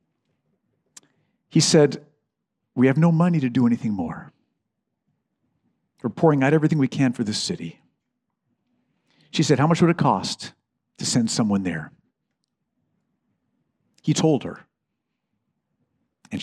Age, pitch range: 50-69, 120-155 Hz